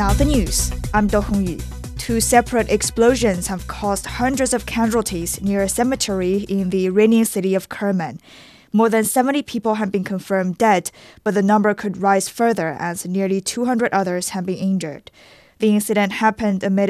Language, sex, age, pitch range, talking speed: English, female, 20-39, 195-220 Hz, 170 wpm